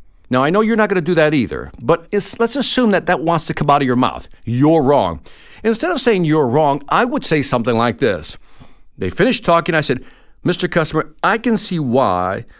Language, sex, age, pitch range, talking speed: English, male, 50-69, 120-195 Hz, 215 wpm